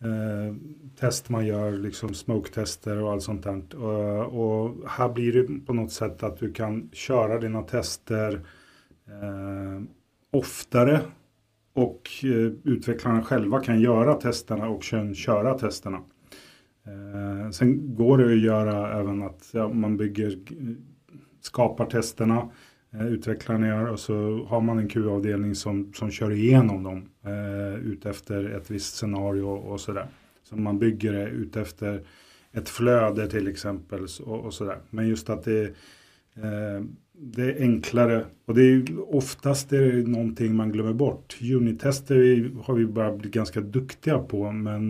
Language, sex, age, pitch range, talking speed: Swedish, male, 30-49, 105-120 Hz, 140 wpm